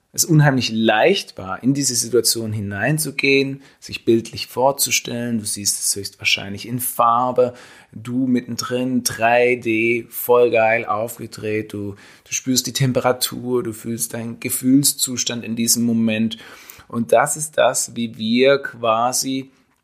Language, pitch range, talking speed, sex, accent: German, 110-130 Hz, 125 wpm, male, German